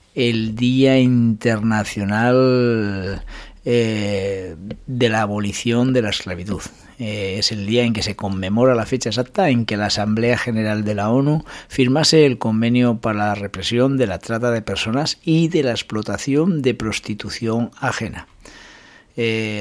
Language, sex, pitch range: Spanish, male, 100-125 Hz